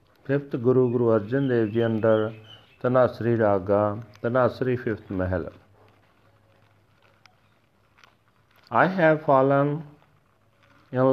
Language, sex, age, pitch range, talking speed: Punjabi, male, 40-59, 110-130 Hz, 85 wpm